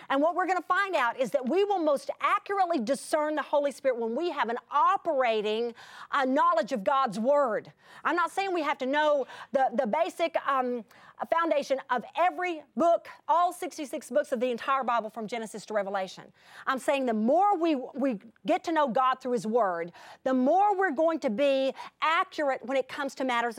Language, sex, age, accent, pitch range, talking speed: English, female, 40-59, American, 240-325 Hz, 200 wpm